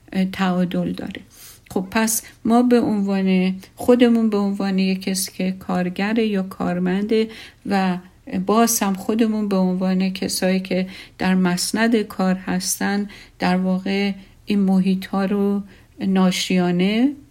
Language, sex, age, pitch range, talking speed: Persian, female, 50-69, 185-215 Hz, 115 wpm